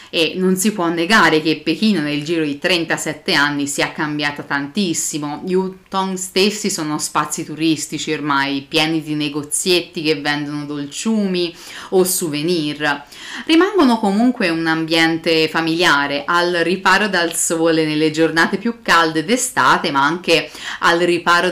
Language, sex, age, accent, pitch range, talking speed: Italian, female, 30-49, native, 150-190 Hz, 135 wpm